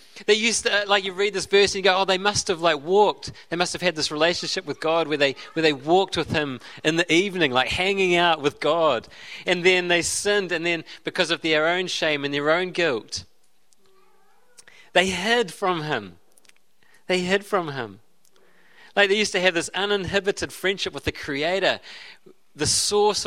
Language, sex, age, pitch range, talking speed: English, male, 30-49, 150-190 Hz, 195 wpm